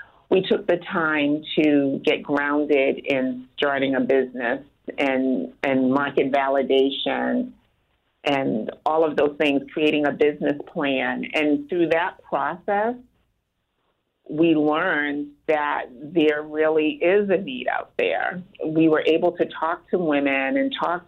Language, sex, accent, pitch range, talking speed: English, female, American, 145-165 Hz, 135 wpm